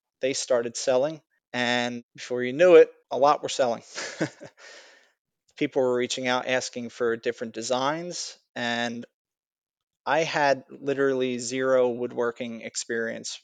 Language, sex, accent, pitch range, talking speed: English, male, American, 120-150 Hz, 120 wpm